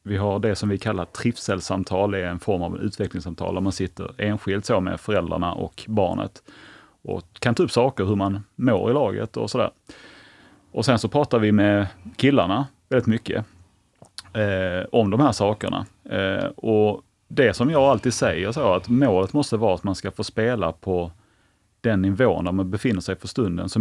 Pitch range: 95-120 Hz